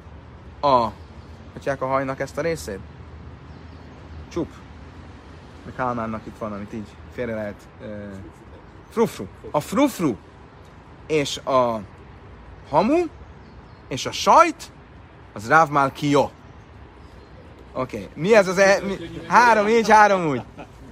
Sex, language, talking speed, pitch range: male, Hungarian, 110 wpm, 115-175 Hz